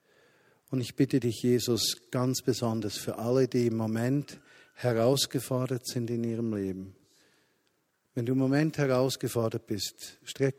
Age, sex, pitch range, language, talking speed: 50-69, male, 110-125 Hz, German, 135 wpm